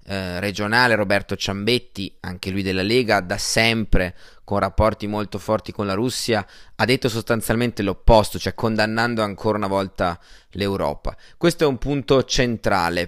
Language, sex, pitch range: Italian, male, 105-125 Hz